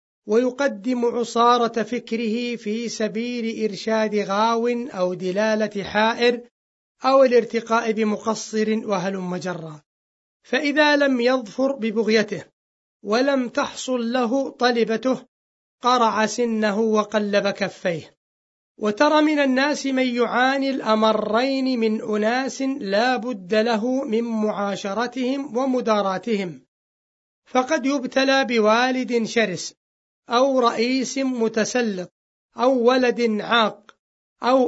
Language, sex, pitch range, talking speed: Arabic, male, 205-245 Hz, 90 wpm